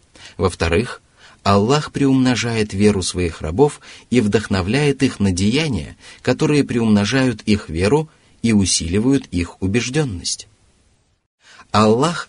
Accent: native